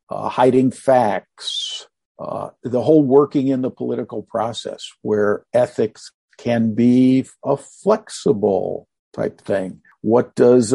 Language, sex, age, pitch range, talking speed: English, male, 50-69, 105-130 Hz, 115 wpm